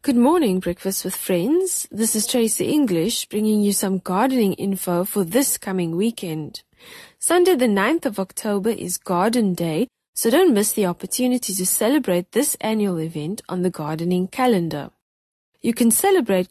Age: 20-39